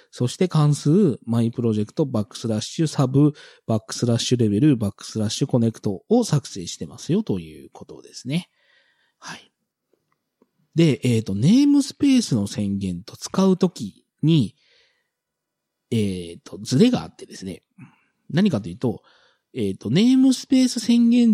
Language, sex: Japanese, male